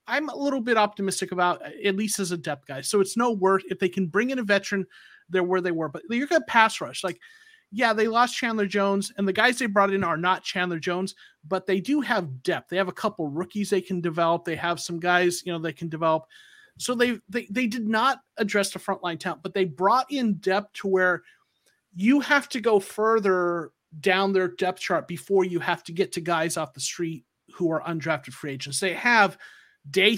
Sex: male